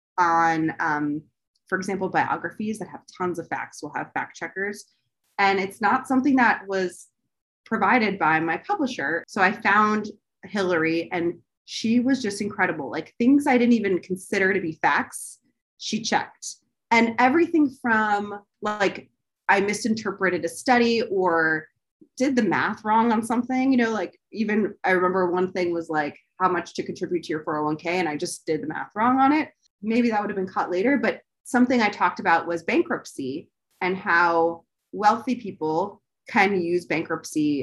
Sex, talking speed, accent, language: female, 170 wpm, American, English